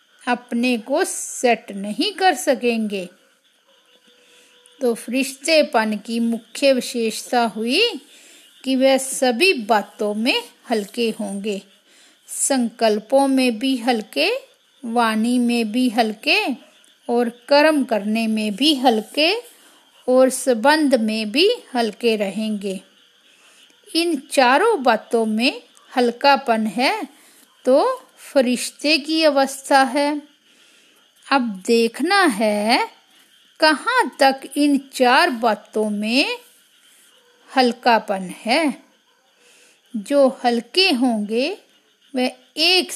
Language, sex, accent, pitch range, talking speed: Hindi, female, native, 230-305 Hz, 85 wpm